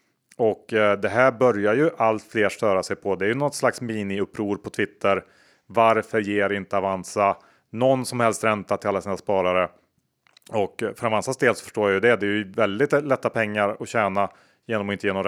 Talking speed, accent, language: 205 wpm, Norwegian, Swedish